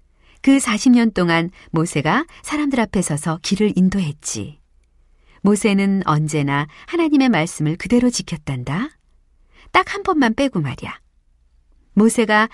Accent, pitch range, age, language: native, 145-235 Hz, 40-59, Korean